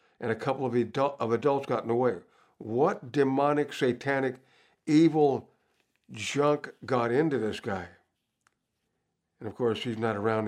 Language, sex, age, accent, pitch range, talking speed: English, male, 60-79, American, 120-155 Hz, 150 wpm